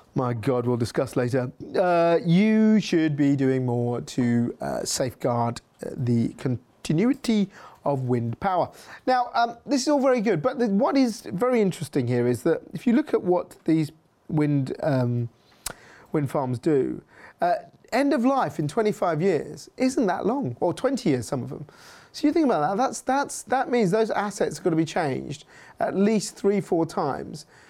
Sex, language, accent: male, English, British